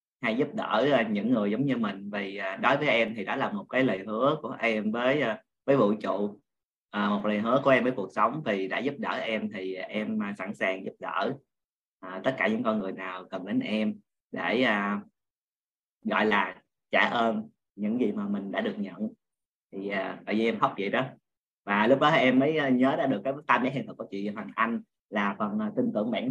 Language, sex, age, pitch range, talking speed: Vietnamese, male, 20-39, 105-135 Hz, 220 wpm